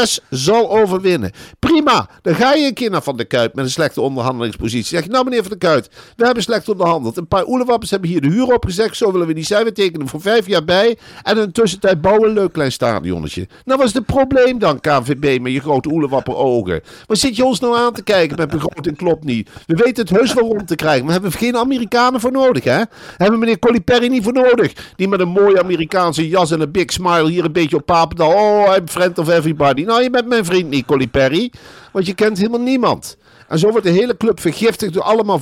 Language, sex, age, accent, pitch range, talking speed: Dutch, male, 50-69, Dutch, 165-220 Hz, 240 wpm